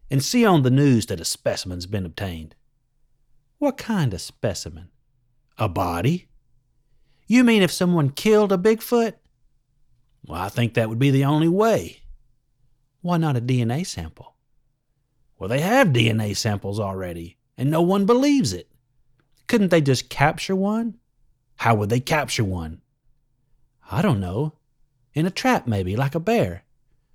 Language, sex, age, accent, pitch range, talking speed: English, male, 40-59, American, 110-145 Hz, 150 wpm